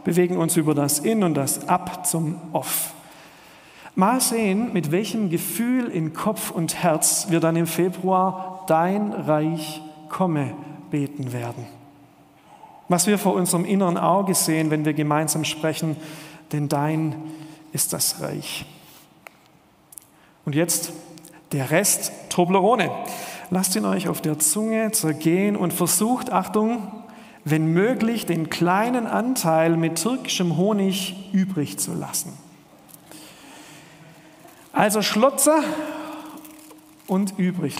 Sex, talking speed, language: male, 115 wpm, German